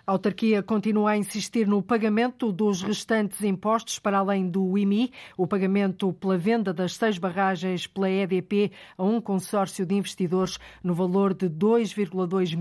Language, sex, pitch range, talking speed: Portuguese, female, 185-210 Hz, 150 wpm